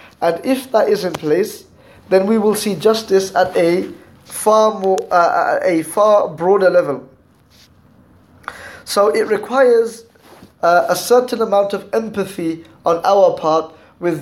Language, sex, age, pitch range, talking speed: English, male, 20-39, 160-200 Hz, 125 wpm